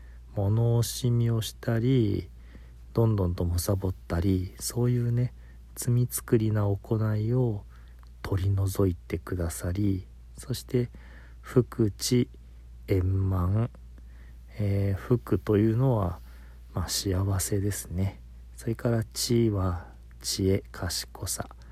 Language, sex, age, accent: Japanese, male, 40-59, native